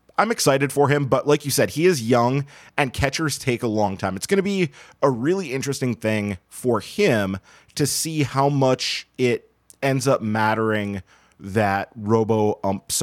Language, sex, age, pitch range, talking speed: English, male, 30-49, 105-135 Hz, 170 wpm